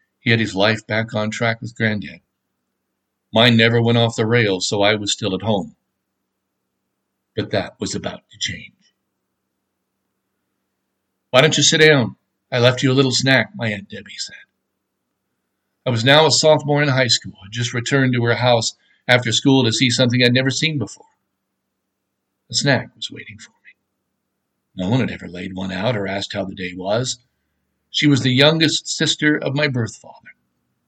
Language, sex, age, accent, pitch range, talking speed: English, male, 60-79, American, 105-130 Hz, 180 wpm